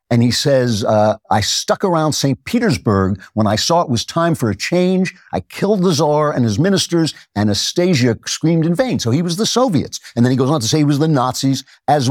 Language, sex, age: English, male, 60-79